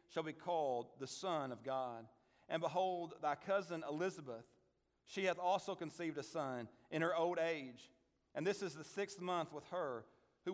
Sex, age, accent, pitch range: male, 40-59, American, 145-190 Hz